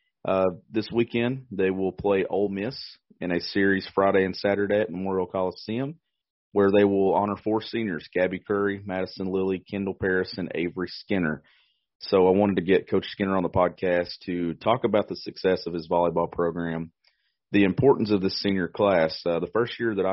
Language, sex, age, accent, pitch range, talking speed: English, male, 30-49, American, 85-100 Hz, 185 wpm